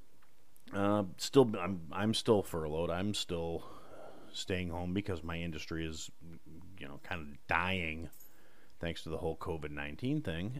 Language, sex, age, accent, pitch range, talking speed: English, male, 30-49, American, 80-100 Hz, 140 wpm